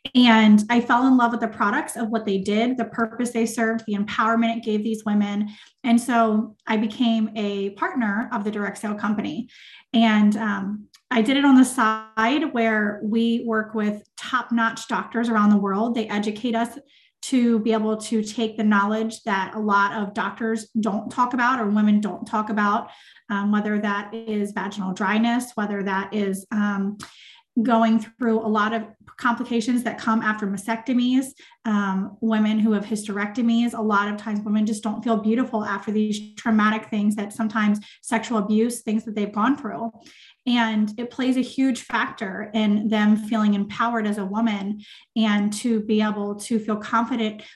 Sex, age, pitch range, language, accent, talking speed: female, 30-49, 210-235 Hz, English, American, 175 wpm